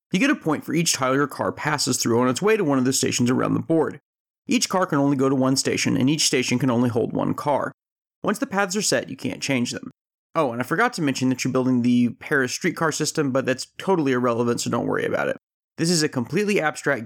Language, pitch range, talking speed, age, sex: English, 125-185 Hz, 260 wpm, 30-49, male